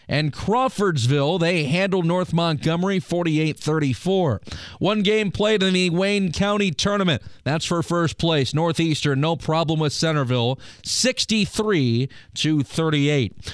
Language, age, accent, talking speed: English, 30-49, American, 120 wpm